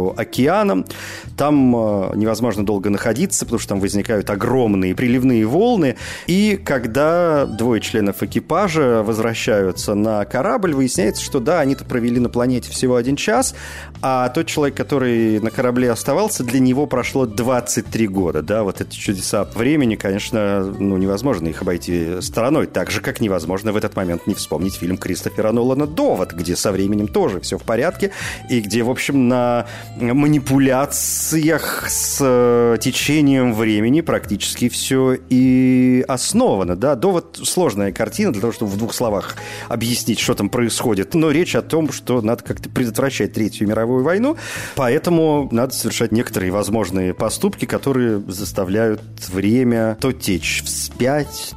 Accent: native